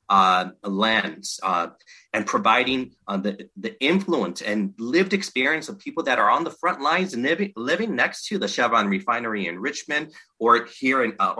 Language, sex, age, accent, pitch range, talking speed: English, male, 30-49, American, 100-130 Hz, 175 wpm